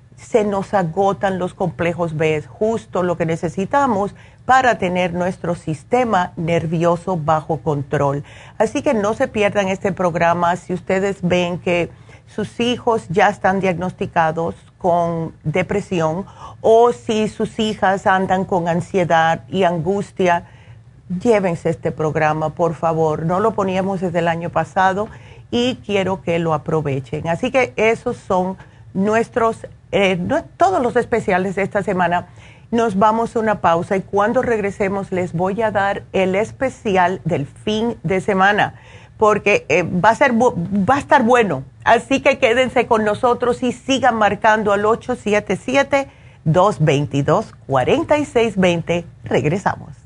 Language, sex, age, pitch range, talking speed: Spanish, female, 40-59, 170-215 Hz, 140 wpm